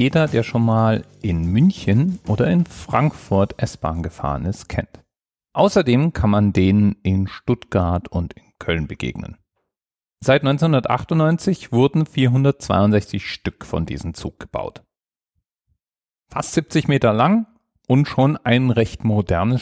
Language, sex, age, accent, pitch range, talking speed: German, male, 40-59, German, 100-135 Hz, 125 wpm